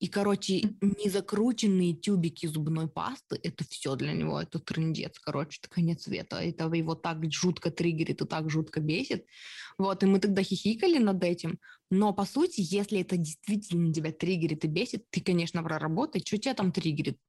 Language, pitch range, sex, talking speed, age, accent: Russian, 160-200 Hz, female, 170 wpm, 20-39, native